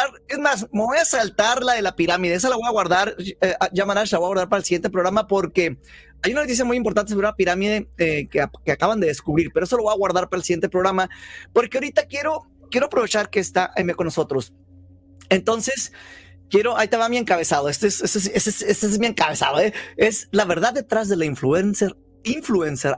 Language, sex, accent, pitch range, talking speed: Spanish, male, Mexican, 165-220 Hz, 225 wpm